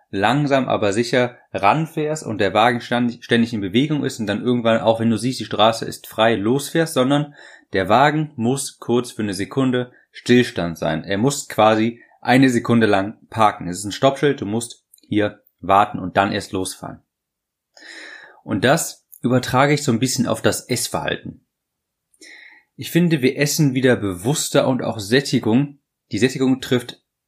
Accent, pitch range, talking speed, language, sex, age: German, 110-140 Hz, 165 wpm, German, male, 30-49